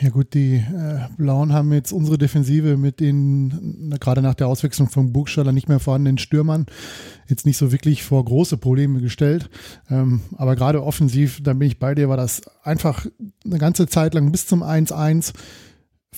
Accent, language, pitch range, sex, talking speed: German, German, 135-155 Hz, male, 170 wpm